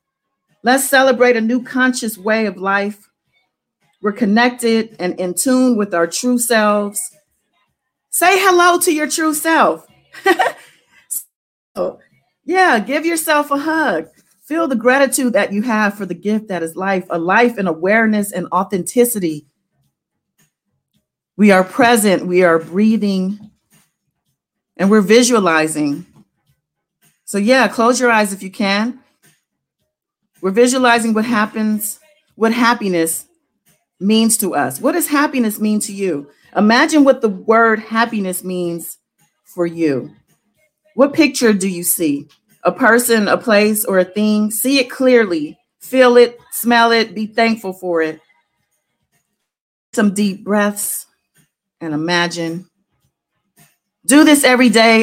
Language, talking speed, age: English, 130 wpm, 40-59